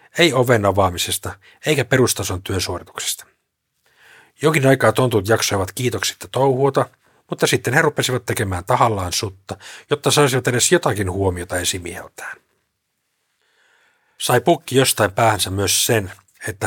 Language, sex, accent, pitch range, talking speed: Finnish, male, native, 95-125 Hz, 115 wpm